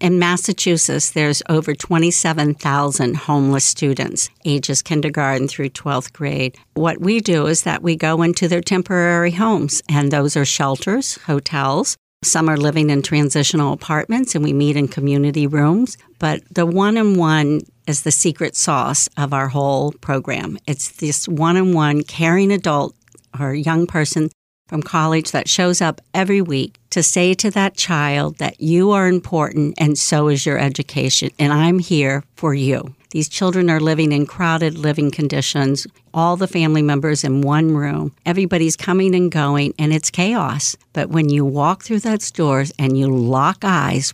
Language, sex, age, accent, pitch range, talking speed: English, female, 60-79, American, 145-175 Hz, 160 wpm